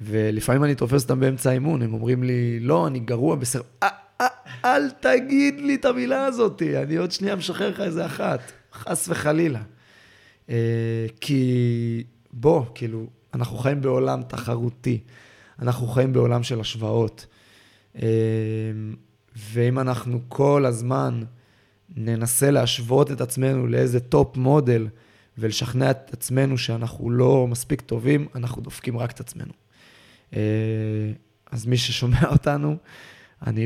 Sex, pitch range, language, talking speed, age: male, 110-135 Hz, Hebrew, 125 wpm, 20-39